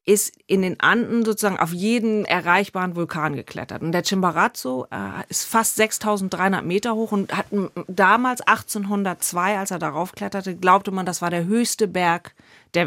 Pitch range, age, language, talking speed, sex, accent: 180-215 Hz, 40-59, German, 165 wpm, female, German